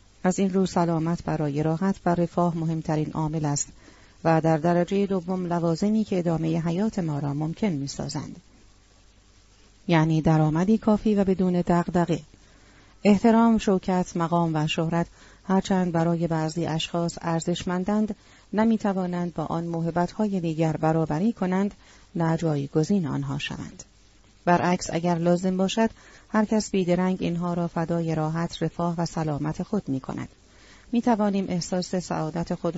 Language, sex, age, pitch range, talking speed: Persian, female, 30-49, 155-190 Hz, 130 wpm